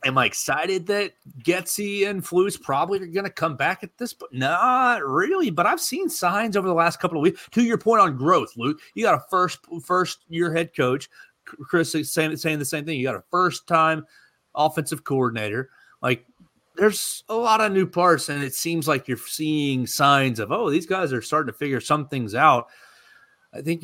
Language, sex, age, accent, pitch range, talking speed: English, male, 30-49, American, 130-190 Hz, 210 wpm